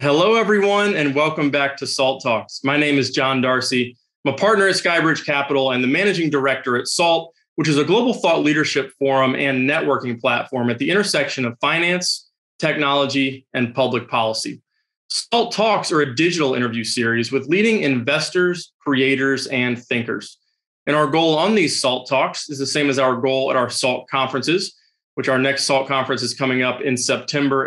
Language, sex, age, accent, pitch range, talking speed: English, male, 20-39, American, 130-160 Hz, 180 wpm